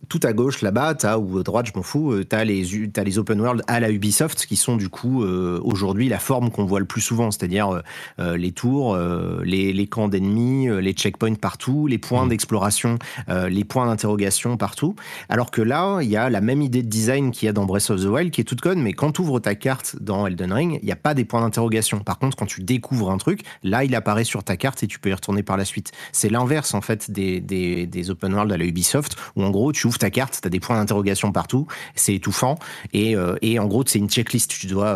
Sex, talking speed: male, 255 wpm